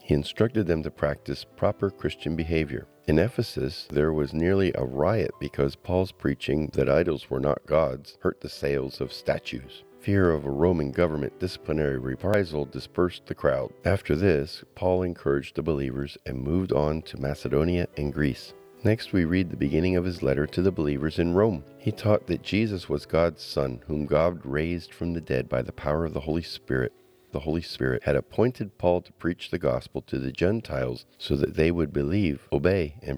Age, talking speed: 50-69, 190 wpm